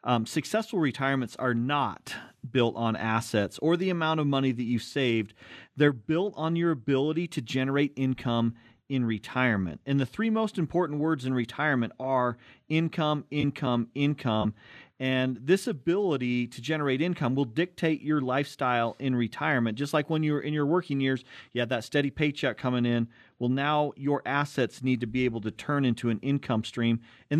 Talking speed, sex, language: 175 wpm, male, English